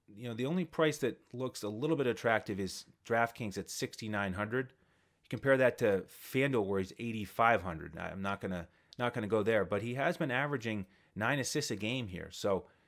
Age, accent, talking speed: 30-49, American, 190 wpm